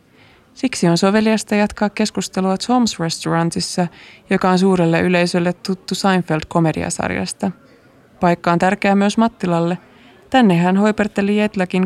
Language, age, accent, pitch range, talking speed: Finnish, 20-39, native, 165-195 Hz, 110 wpm